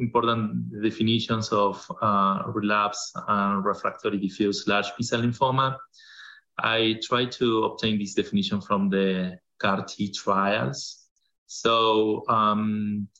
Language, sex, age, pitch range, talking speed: English, male, 30-49, 100-115 Hz, 115 wpm